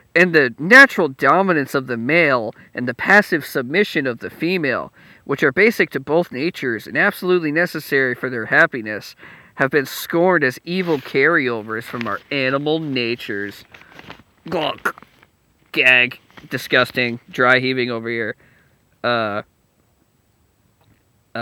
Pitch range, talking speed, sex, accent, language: 120-155 Hz, 125 wpm, male, American, English